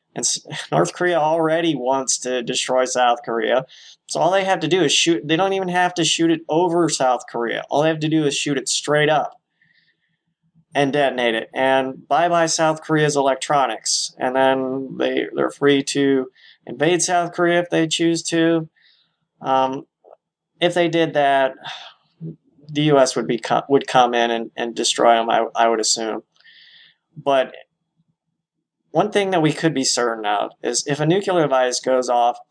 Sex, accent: male, American